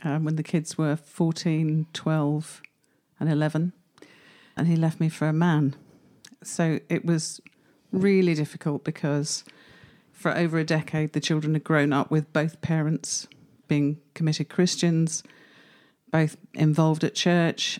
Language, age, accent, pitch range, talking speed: English, 50-69, British, 150-170 Hz, 140 wpm